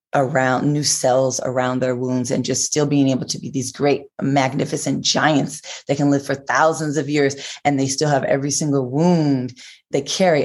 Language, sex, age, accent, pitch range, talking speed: English, female, 30-49, American, 130-155 Hz, 190 wpm